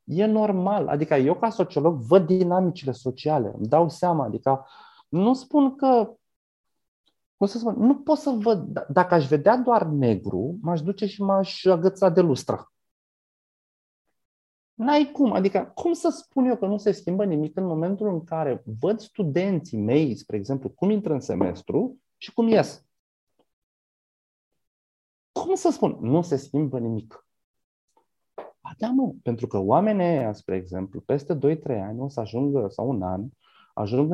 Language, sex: Romanian, male